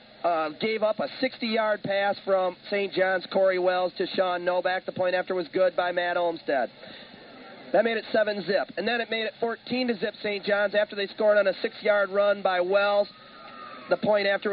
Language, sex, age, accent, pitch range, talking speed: English, male, 40-59, American, 170-210 Hz, 200 wpm